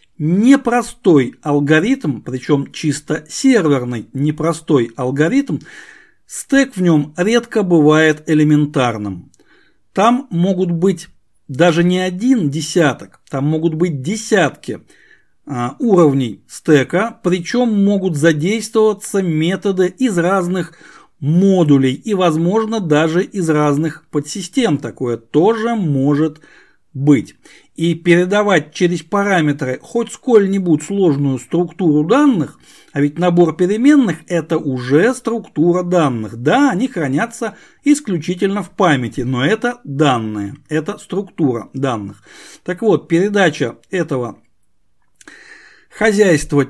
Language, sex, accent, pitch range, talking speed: Russian, male, native, 145-205 Hz, 100 wpm